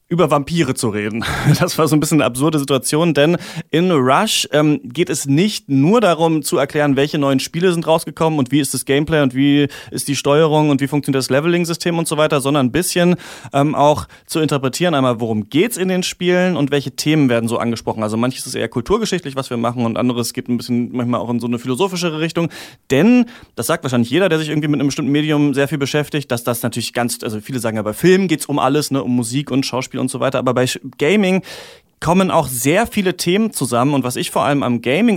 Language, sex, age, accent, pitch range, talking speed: German, male, 30-49, German, 130-165 Hz, 230 wpm